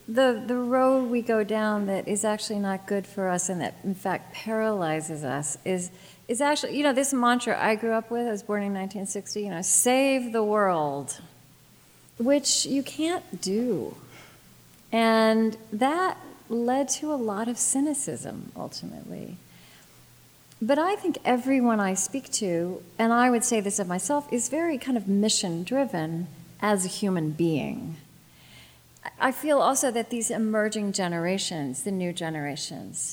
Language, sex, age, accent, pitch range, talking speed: English, female, 40-59, American, 175-240 Hz, 155 wpm